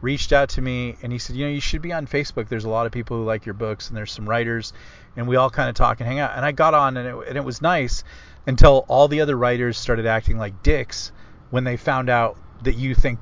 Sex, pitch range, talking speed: male, 110-130 Hz, 275 wpm